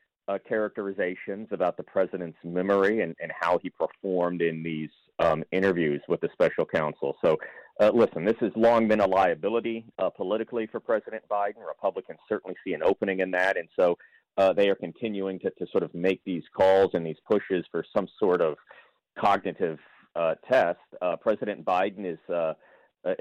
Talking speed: 175 wpm